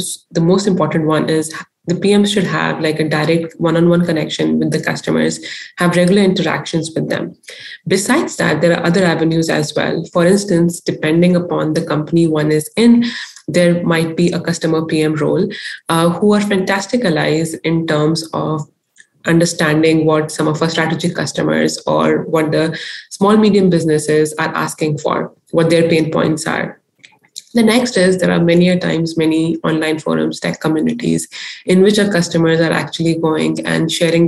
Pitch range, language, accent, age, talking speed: 155-175 Hz, English, Indian, 20-39, 165 wpm